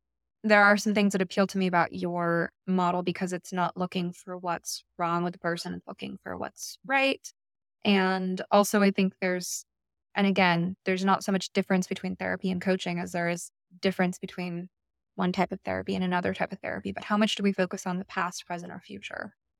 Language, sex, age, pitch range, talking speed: English, female, 20-39, 180-205 Hz, 210 wpm